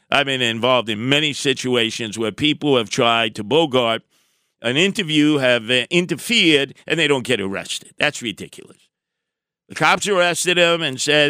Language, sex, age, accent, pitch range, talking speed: English, male, 50-69, American, 125-160 Hz, 160 wpm